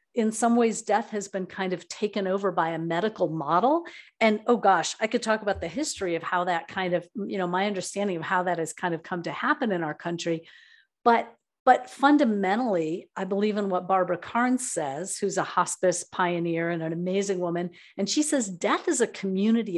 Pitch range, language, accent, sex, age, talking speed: 185-235 Hz, English, American, female, 50-69, 210 wpm